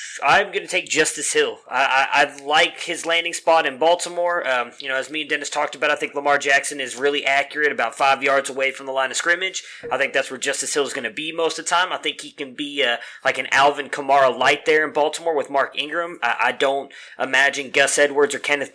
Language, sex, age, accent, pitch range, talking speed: English, male, 20-39, American, 135-165 Hz, 255 wpm